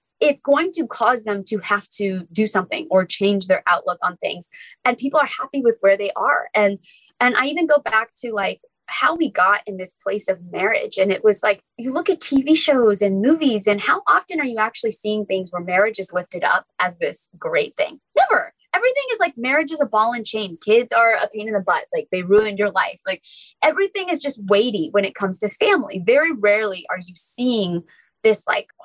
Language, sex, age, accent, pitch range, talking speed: English, female, 20-39, American, 190-265 Hz, 225 wpm